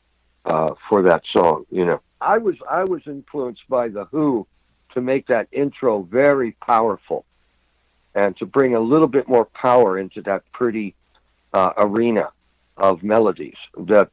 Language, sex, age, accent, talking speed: English, male, 60-79, American, 155 wpm